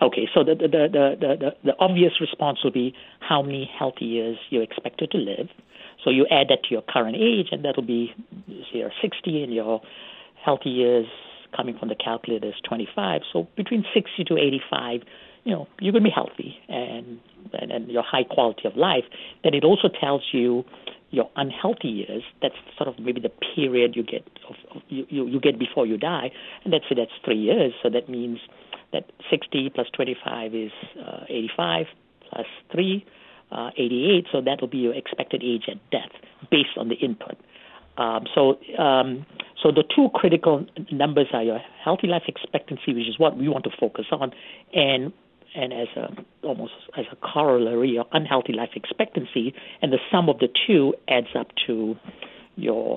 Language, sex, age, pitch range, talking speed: English, female, 50-69, 120-160 Hz, 190 wpm